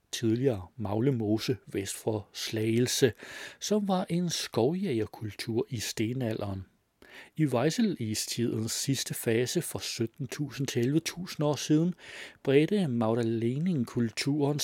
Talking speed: 85 wpm